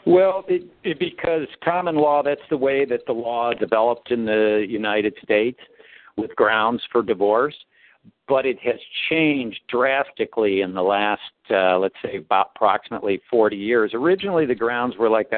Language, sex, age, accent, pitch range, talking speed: English, male, 60-79, American, 105-130 Hz, 160 wpm